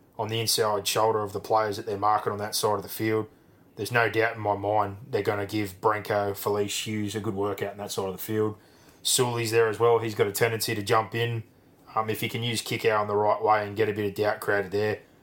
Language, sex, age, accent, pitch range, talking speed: English, male, 20-39, Australian, 100-115 Hz, 270 wpm